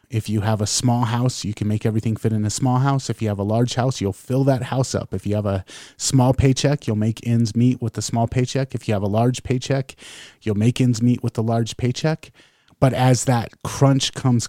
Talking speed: 245 wpm